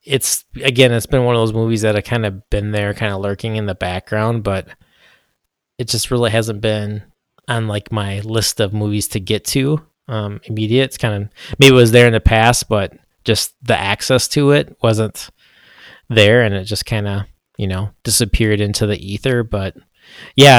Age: 20-39